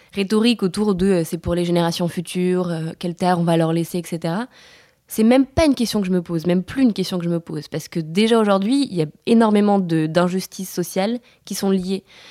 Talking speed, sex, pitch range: 225 wpm, female, 170-200 Hz